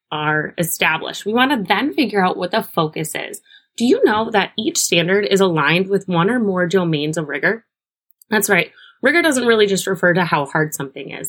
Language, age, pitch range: English, 20-39, 170-230 Hz